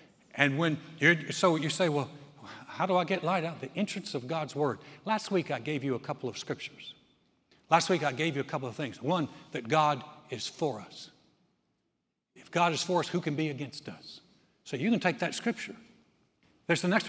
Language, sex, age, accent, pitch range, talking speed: English, male, 60-79, American, 165-225 Hz, 210 wpm